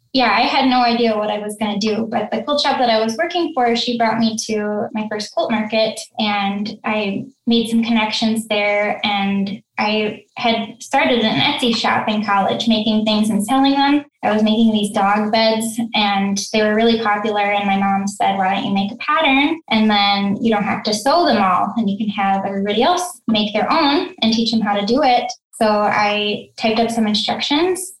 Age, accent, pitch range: 10-29, American, 205-235 Hz